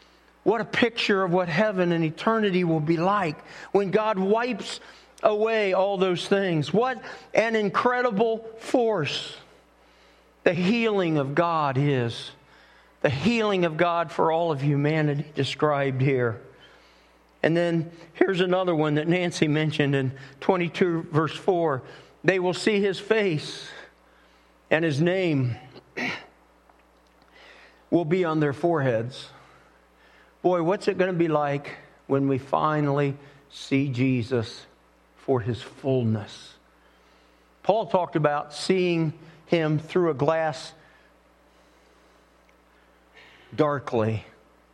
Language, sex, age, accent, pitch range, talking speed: English, male, 50-69, American, 135-190 Hz, 115 wpm